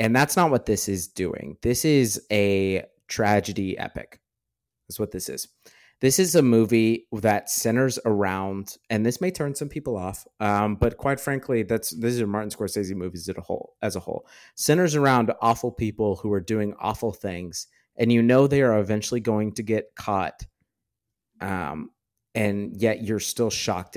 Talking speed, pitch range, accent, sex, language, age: 175 wpm, 95-120 Hz, American, male, English, 30-49